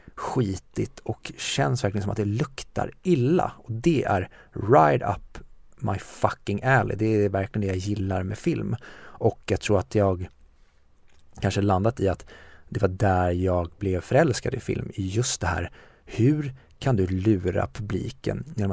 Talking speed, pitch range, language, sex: 165 wpm, 95-120 Hz, Swedish, male